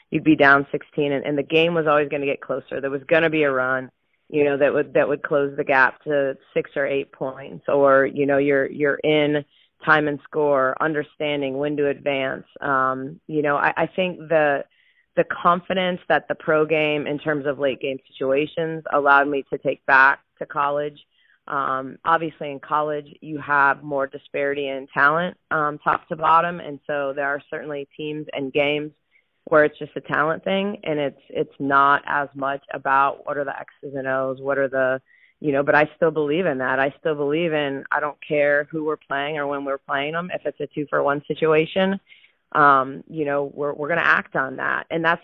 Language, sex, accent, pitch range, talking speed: English, female, American, 140-155 Hz, 210 wpm